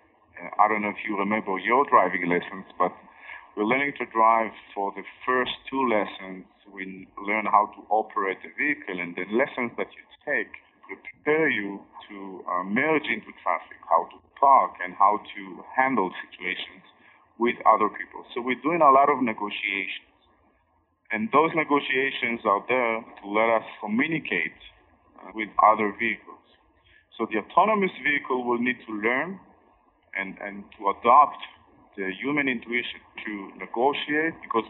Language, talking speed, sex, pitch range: English, 150 wpm, male, 100-125 Hz